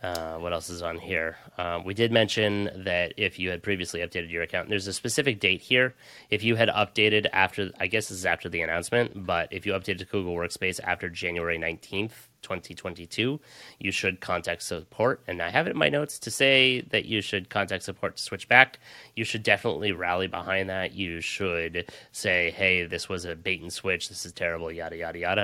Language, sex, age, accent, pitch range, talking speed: English, male, 20-39, American, 85-100 Hz, 210 wpm